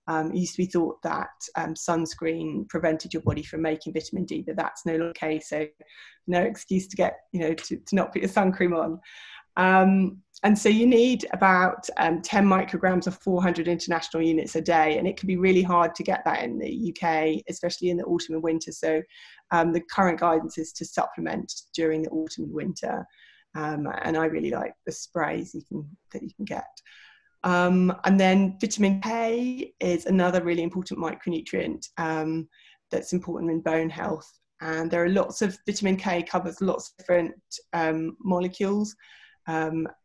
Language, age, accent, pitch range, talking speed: English, 20-39, British, 160-185 Hz, 185 wpm